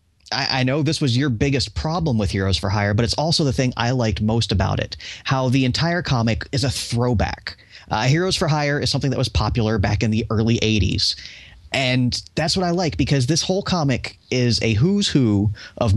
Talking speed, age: 210 wpm, 30-49